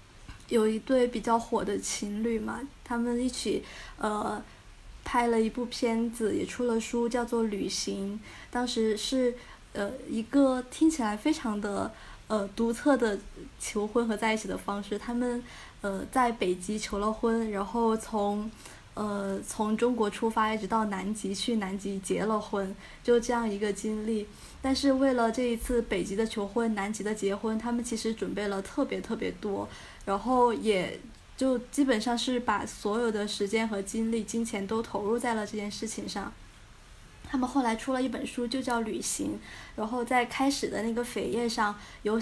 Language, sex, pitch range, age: Chinese, female, 210-240 Hz, 20-39